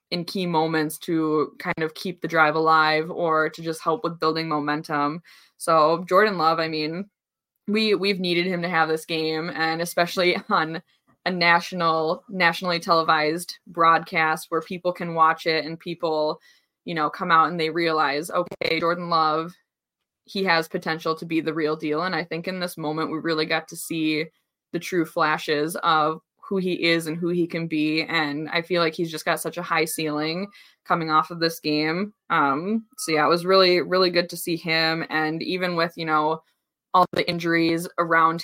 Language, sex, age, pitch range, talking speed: English, female, 20-39, 160-175 Hz, 190 wpm